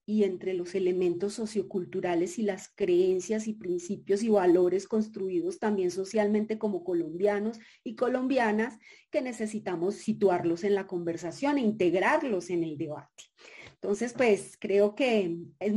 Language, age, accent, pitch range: Spanish, 30-49, Colombian, 195-235 Hz